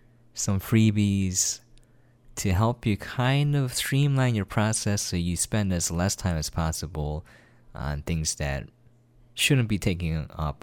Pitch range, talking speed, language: 90-120 Hz, 140 wpm, English